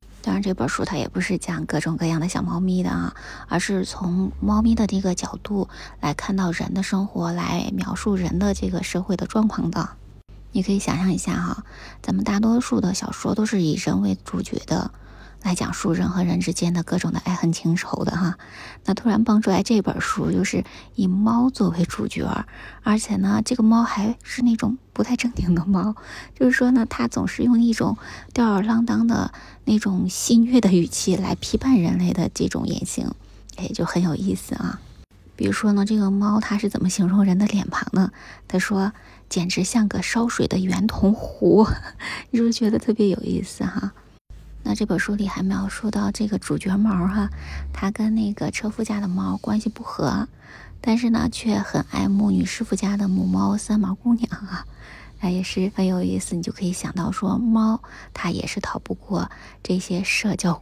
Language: Chinese